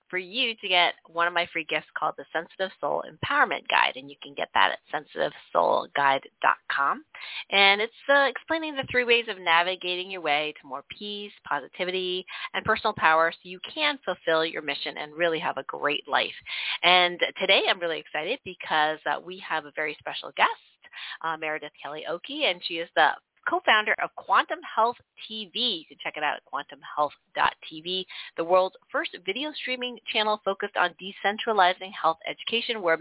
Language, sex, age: English, female, 30-49